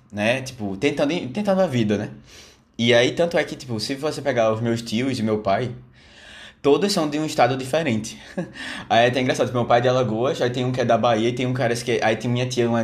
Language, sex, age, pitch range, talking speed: Portuguese, male, 20-39, 105-140 Hz, 250 wpm